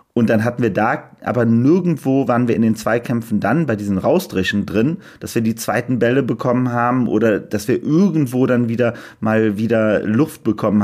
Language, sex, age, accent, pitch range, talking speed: German, male, 30-49, German, 105-135 Hz, 190 wpm